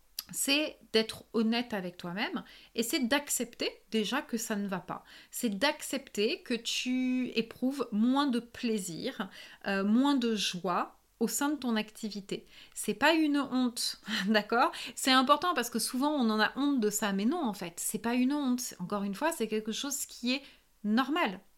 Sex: female